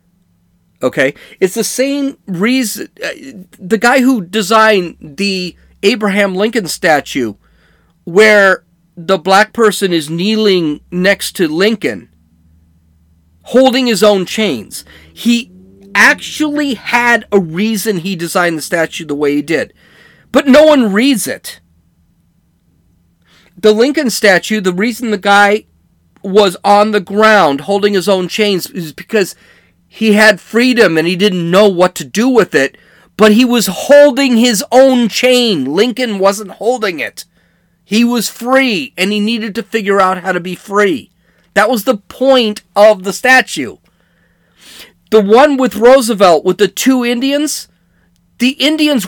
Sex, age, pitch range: male, 40-59, 180-240 Hz